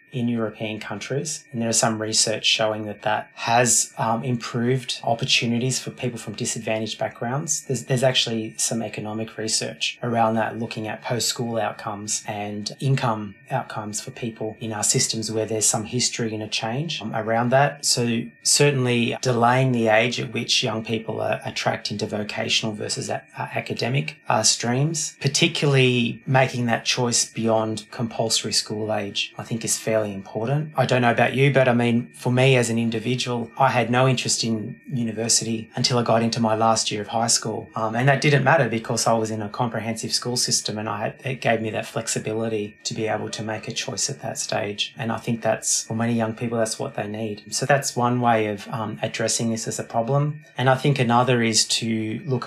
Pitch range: 110-130 Hz